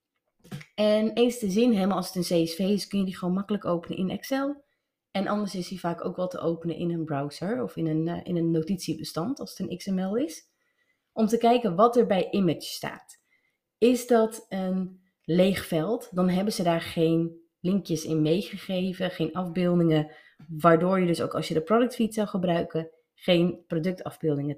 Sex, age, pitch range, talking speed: female, 30-49, 170-225 Hz, 185 wpm